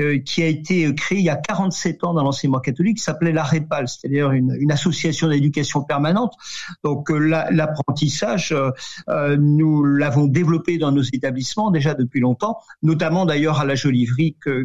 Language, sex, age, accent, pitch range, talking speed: French, male, 50-69, French, 145-175 Hz, 170 wpm